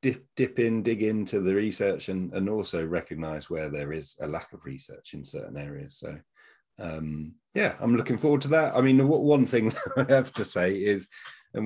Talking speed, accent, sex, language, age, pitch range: 200 wpm, British, male, English, 30-49, 85-115 Hz